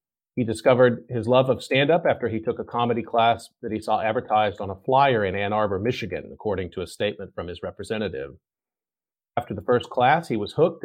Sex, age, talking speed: male, 40-59, 210 wpm